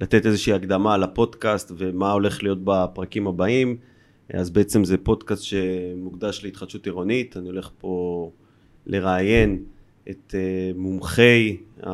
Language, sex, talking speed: Hebrew, male, 110 wpm